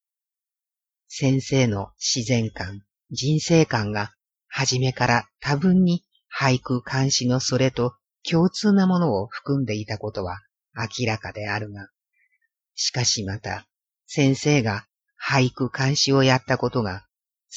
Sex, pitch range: female, 105-140 Hz